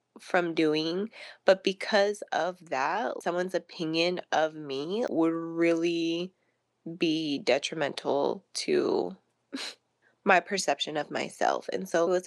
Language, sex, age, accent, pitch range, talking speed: English, female, 20-39, American, 170-200 Hz, 110 wpm